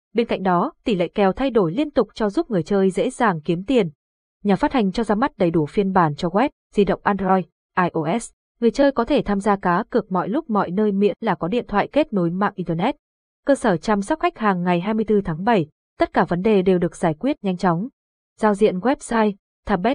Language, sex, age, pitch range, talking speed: Vietnamese, female, 20-39, 185-235 Hz, 235 wpm